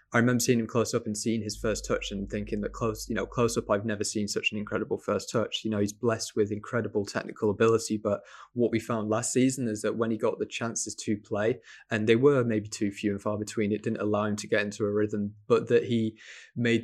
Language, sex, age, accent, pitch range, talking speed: English, male, 20-39, British, 105-115 Hz, 255 wpm